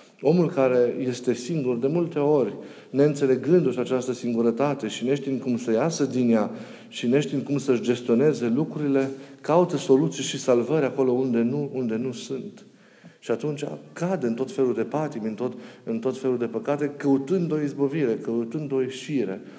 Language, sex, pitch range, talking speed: Romanian, male, 120-150 Hz, 165 wpm